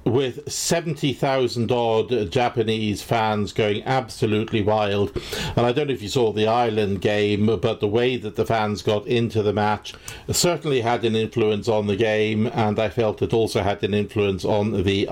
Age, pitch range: 50-69, 105-125 Hz